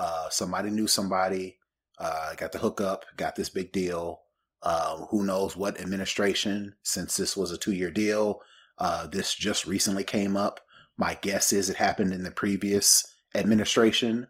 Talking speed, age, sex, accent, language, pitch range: 160 wpm, 30-49, male, American, English, 95-120 Hz